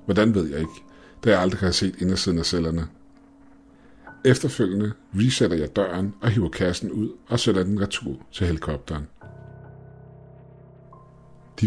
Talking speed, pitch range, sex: 145 wpm, 85-110 Hz, male